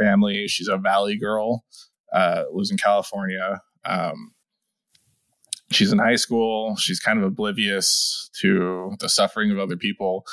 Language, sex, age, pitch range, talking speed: English, male, 20-39, 95-150 Hz, 140 wpm